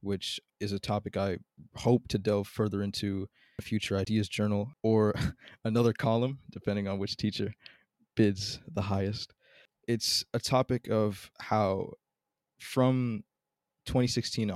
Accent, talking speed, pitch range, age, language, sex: American, 130 wpm, 100-110 Hz, 20-39, English, male